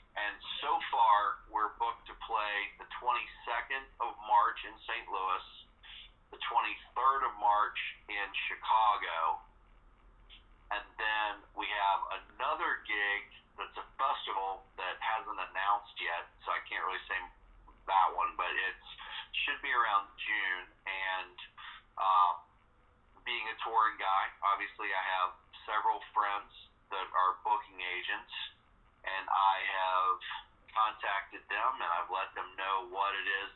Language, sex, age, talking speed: English, male, 40-59, 130 wpm